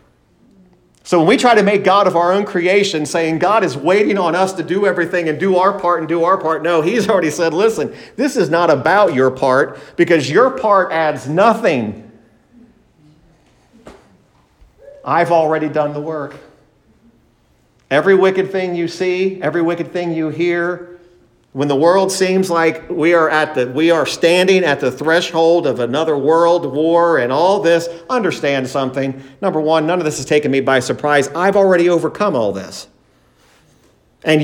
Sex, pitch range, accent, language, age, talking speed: male, 155-220 Hz, American, English, 50-69, 175 wpm